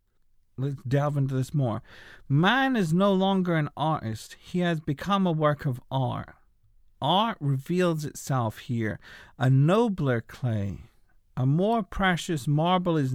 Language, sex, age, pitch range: English, male, 40-59, 125-170 Hz